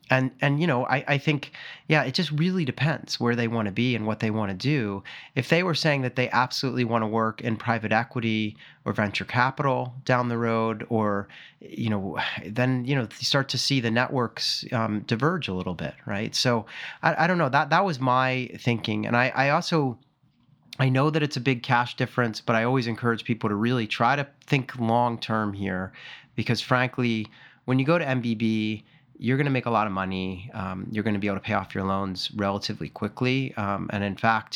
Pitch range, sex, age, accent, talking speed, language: 110-130 Hz, male, 30-49, American, 220 wpm, English